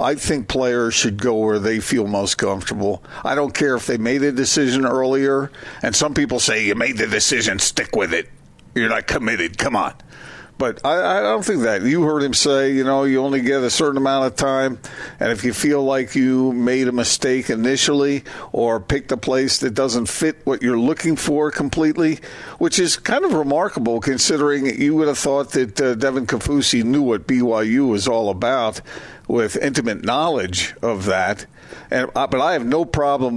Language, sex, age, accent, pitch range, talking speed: English, male, 50-69, American, 125-150 Hz, 195 wpm